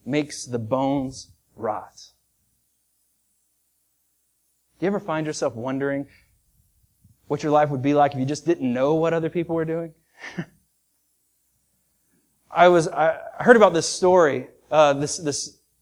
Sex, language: male, English